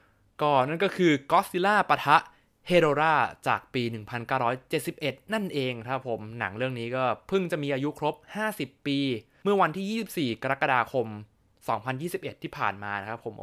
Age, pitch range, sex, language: 20-39, 120-155 Hz, male, Thai